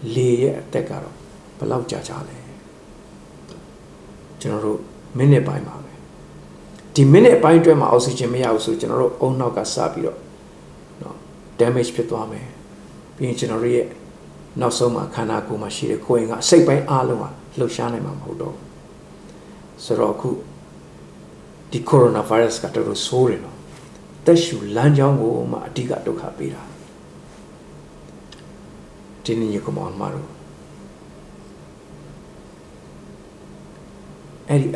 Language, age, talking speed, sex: English, 60-79, 45 wpm, male